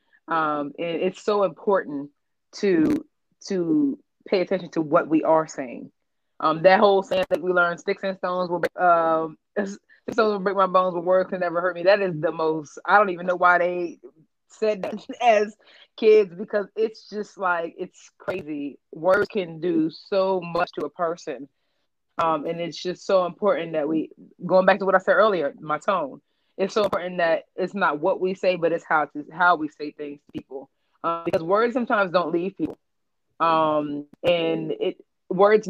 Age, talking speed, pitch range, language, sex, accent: 20-39, 185 wpm, 160-195 Hz, English, female, American